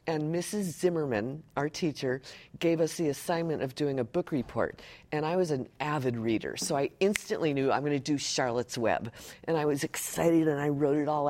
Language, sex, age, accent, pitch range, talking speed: English, female, 50-69, American, 140-175 Hz, 205 wpm